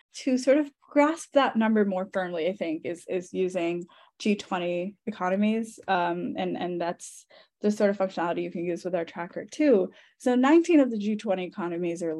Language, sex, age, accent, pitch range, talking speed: English, female, 10-29, American, 180-240 Hz, 180 wpm